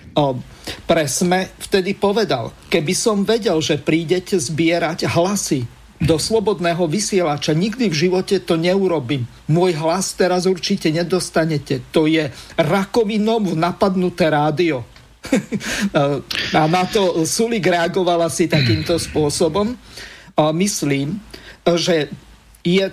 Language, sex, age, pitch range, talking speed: Slovak, male, 50-69, 150-185 Hz, 100 wpm